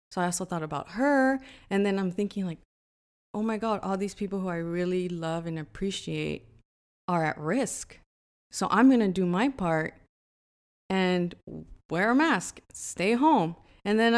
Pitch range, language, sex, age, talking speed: 165-220 Hz, English, female, 20-39, 175 wpm